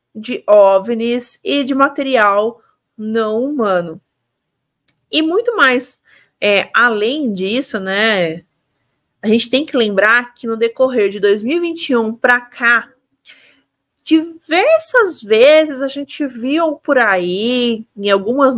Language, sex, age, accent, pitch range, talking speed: Portuguese, female, 30-49, Brazilian, 220-285 Hz, 115 wpm